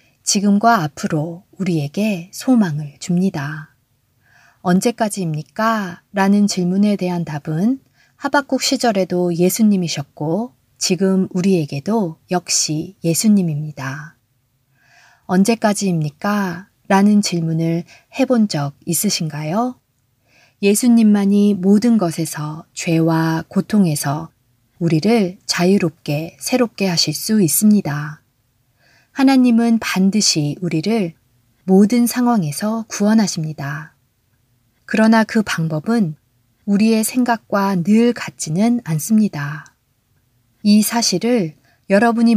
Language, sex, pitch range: Korean, female, 150-215 Hz